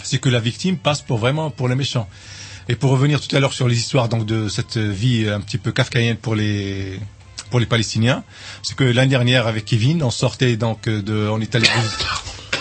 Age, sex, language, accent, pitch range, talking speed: 40-59, male, French, French, 110-135 Hz, 220 wpm